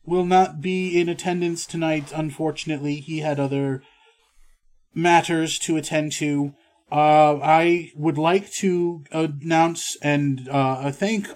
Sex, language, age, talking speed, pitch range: male, English, 30-49, 120 wpm, 130-165 Hz